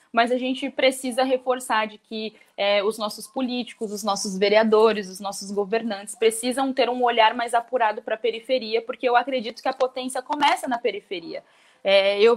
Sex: female